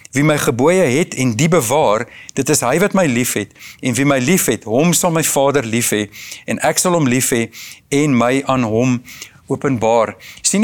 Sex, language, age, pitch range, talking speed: male, English, 50-69, 125-170 Hz, 210 wpm